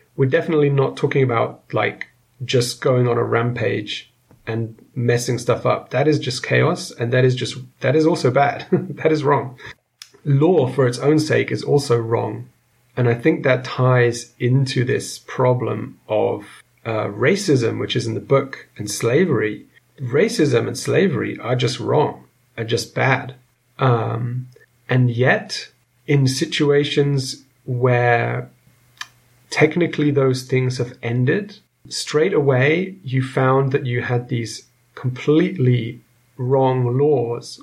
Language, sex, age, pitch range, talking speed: English, male, 30-49, 120-145 Hz, 140 wpm